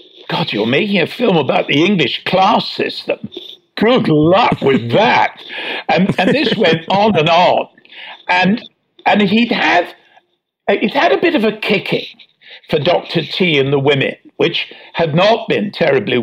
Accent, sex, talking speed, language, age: British, male, 150 wpm, English, 60-79